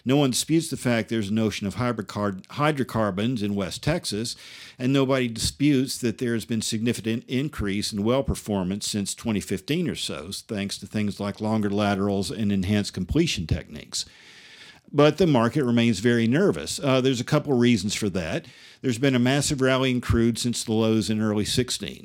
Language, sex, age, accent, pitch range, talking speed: English, male, 50-69, American, 100-130 Hz, 180 wpm